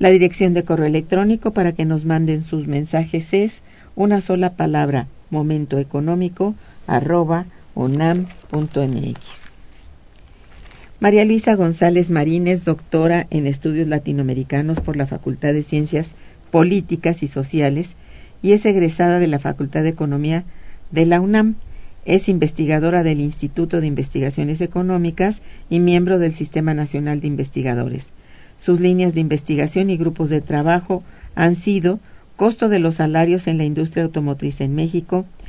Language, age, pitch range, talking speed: Spanish, 50-69, 150-180 Hz, 130 wpm